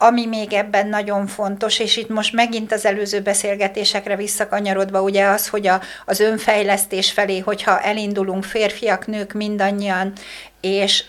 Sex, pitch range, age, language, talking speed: female, 195-215 Hz, 60-79, Hungarian, 135 wpm